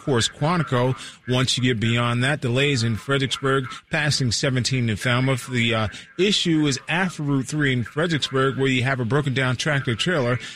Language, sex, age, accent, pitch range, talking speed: English, male, 40-59, American, 115-145 Hz, 165 wpm